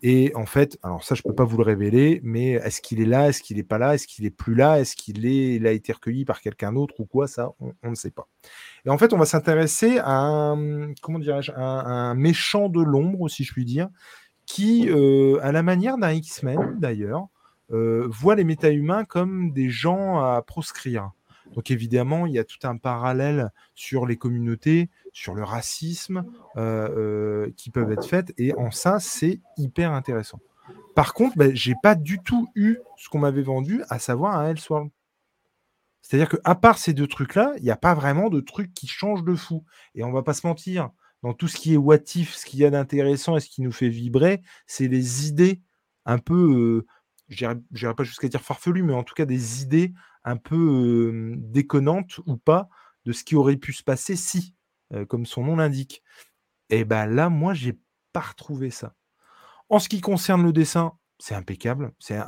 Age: 20-39